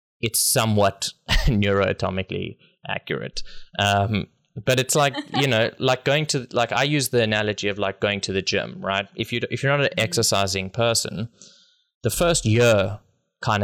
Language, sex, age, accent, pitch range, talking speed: English, male, 20-39, Australian, 100-125 Hz, 165 wpm